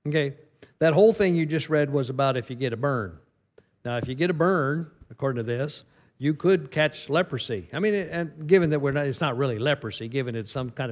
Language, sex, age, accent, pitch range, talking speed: English, male, 50-69, American, 120-145 Hz, 230 wpm